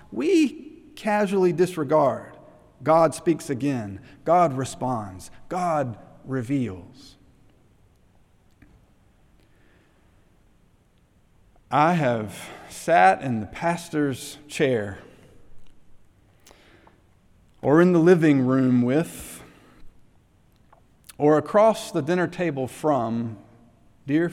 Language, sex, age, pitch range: English, male, 50-69, 105-165 Hz